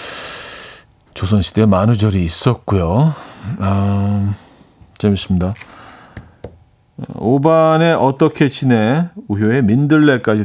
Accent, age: native, 40-59